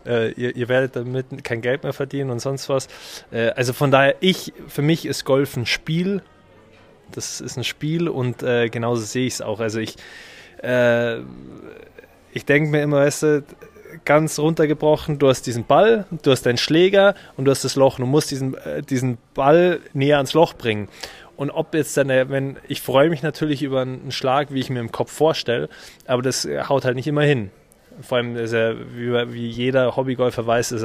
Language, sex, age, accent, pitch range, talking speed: German, male, 20-39, German, 120-145 Hz, 195 wpm